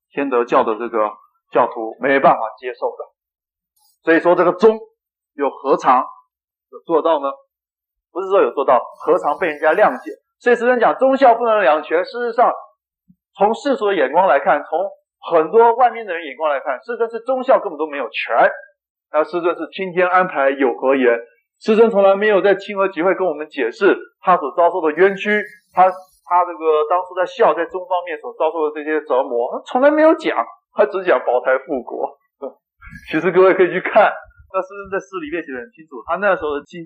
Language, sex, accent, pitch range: Chinese, male, native, 170-255 Hz